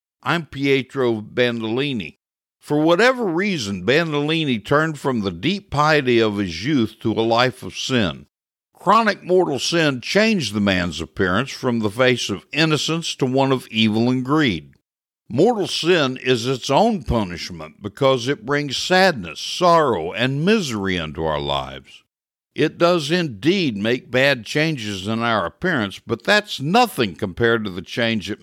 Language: English